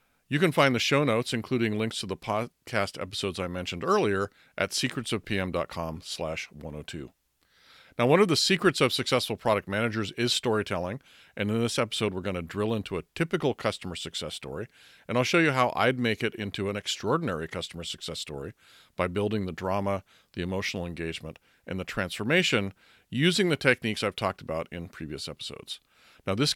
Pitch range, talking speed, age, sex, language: 95-125 Hz, 175 wpm, 50-69, male, English